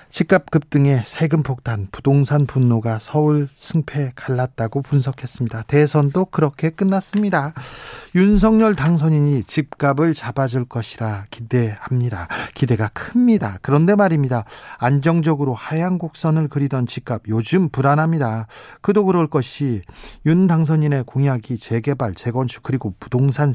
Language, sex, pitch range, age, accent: Korean, male, 125-175 Hz, 40-59, native